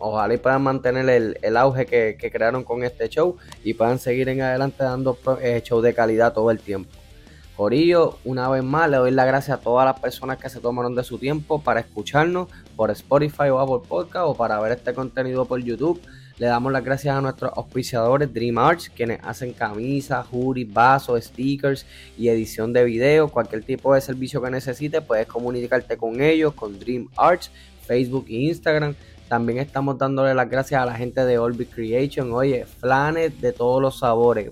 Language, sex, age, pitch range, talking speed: Spanish, male, 10-29, 115-135 Hz, 190 wpm